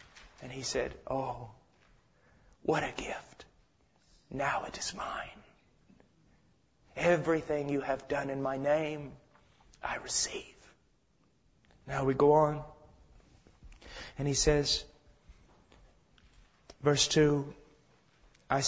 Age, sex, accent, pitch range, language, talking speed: 30-49, male, American, 135-170 Hz, English, 95 wpm